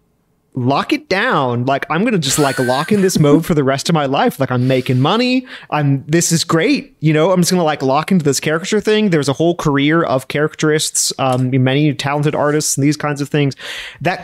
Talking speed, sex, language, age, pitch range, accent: 225 wpm, male, English, 30-49, 130-160 Hz, American